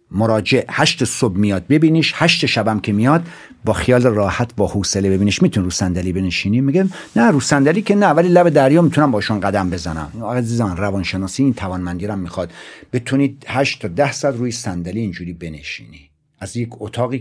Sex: male